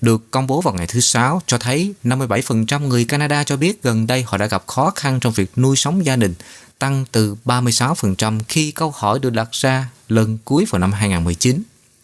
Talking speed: 205 wpm